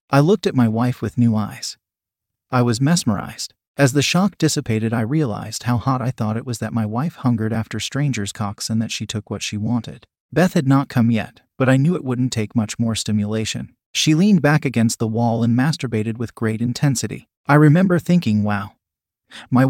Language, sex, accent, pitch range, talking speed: English, male, American, 110-140 Hz, 205 wpm